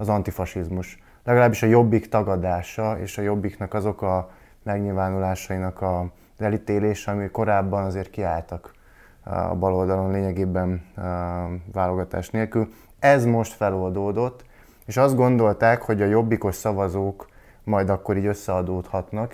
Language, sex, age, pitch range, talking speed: Hungarian, male, 20-39, 95-110 Hz, 120 wpm